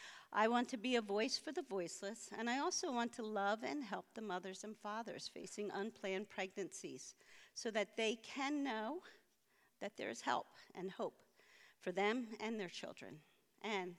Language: English